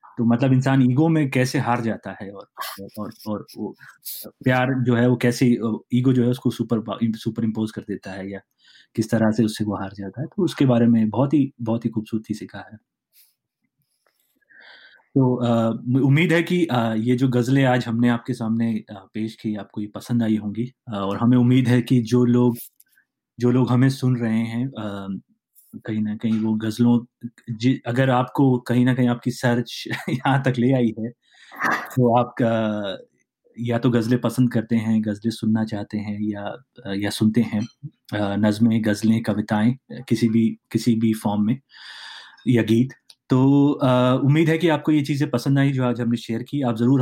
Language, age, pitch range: Hindi, 30-49, 110-125 Hz